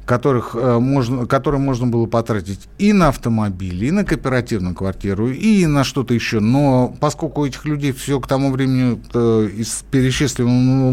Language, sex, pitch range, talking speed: Russian, male, 110-160 Hz, 150 wpm